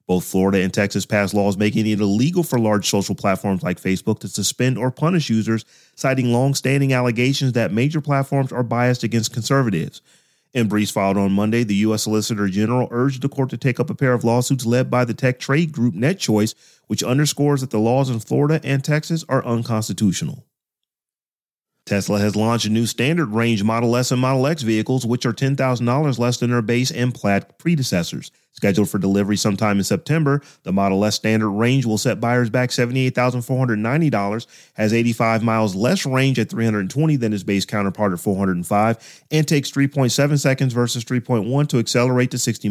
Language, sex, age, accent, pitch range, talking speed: English, male, 30-49, American, 105-135 Hz, 180 wpm